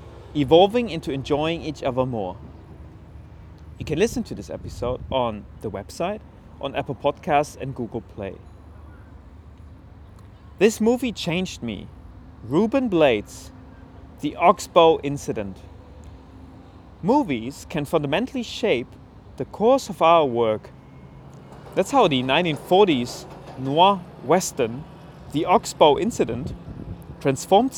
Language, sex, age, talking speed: English, male, 30-49, 105 wpm